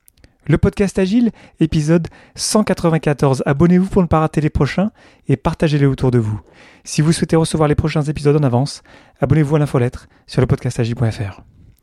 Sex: male